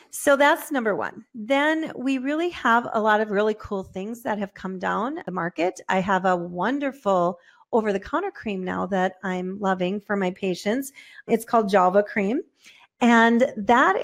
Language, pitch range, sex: English, 200-245 Hz, female